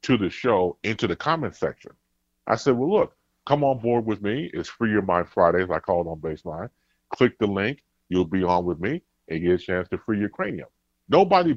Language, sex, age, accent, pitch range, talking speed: English, female, 30-49, American, 90-135 Hz, 225 wpm